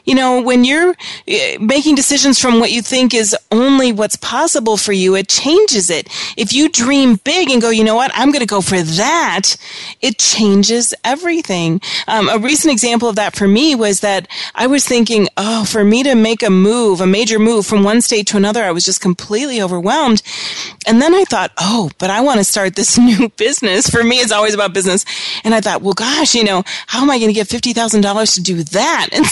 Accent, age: American, 30-49